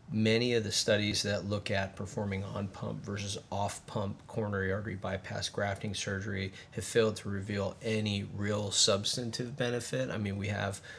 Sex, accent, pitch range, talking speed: male, American, 100-110 Hz, 155 wpm